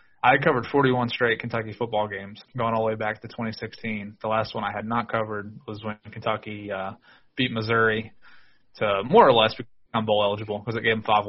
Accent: American